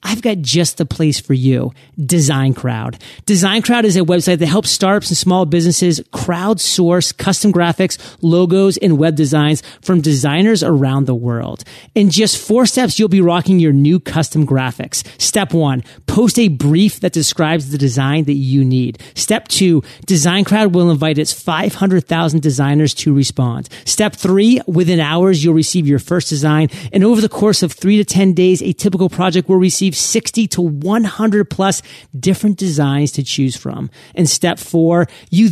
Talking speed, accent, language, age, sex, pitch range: 170 wpm, American, English, 40-59, male, 150-190 Hz